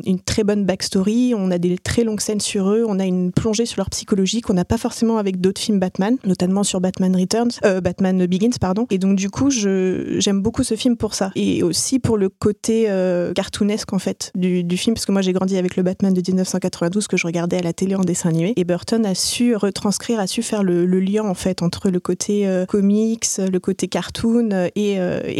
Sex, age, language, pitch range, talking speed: female, 20-39, French, 185-220 Hz, 235 wpm